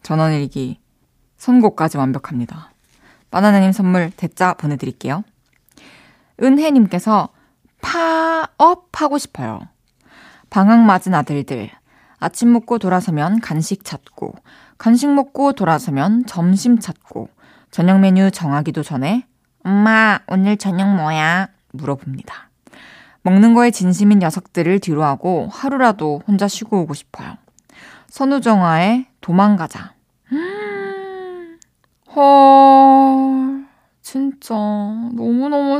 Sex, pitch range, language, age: female, 175-260 Hz, Korean, 20-39